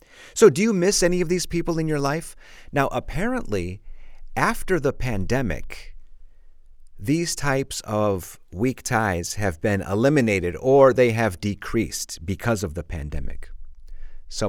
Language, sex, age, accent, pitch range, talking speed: English, male, 40-59, American, 85-130 Hz, 135 wpm